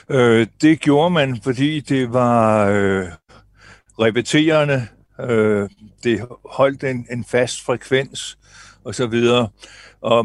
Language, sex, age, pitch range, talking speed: Danish, male, 60-79, 115-130 Hz, 110 wpm